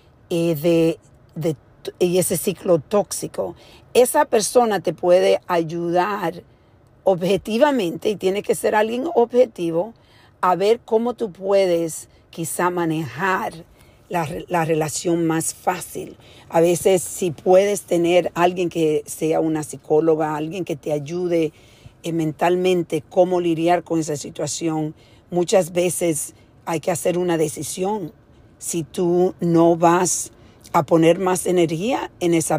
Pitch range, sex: 155-190 Hz, female